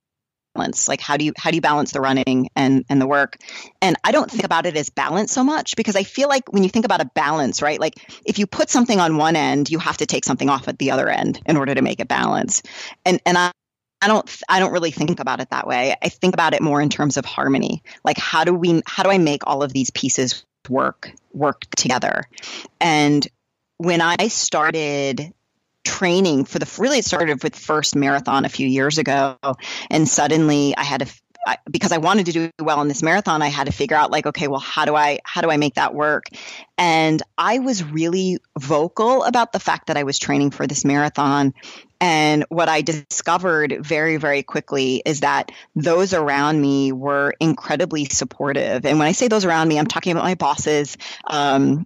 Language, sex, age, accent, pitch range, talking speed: English, female, 30-49, American, 140-175 Hz, 215 wpm